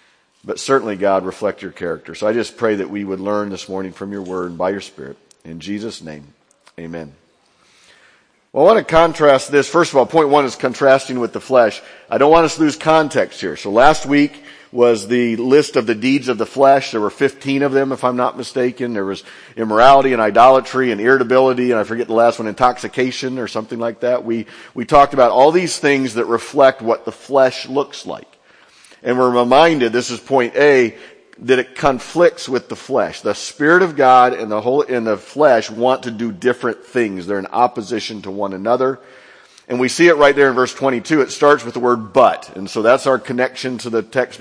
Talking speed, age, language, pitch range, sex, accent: 220 wpm, 50-69, English, 110-135 Hz, male, American